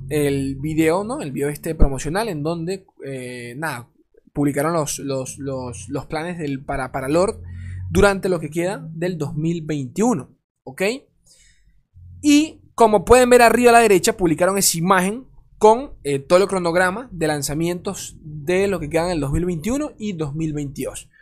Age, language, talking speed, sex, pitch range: 20-39, Spanish, 155 wpm, male, 145-225 Hz